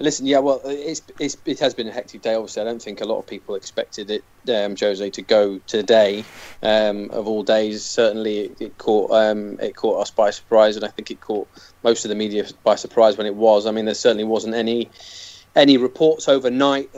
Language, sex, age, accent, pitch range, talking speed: English, male, 20-39, British, 105-120 Hz, 225 wpm